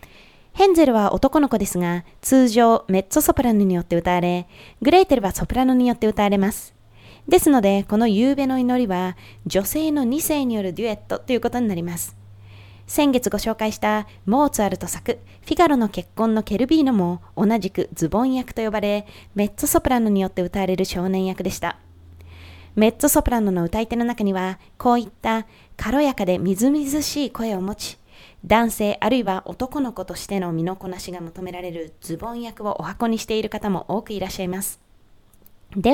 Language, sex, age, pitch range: Japanese, female, 20-39, 185-250 Hz